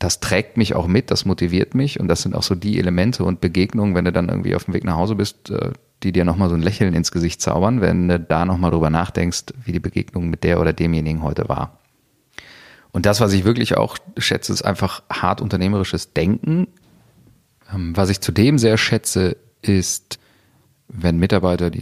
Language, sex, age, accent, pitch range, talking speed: German, male, 40-59, German, 80-105 Hz, 200 wpm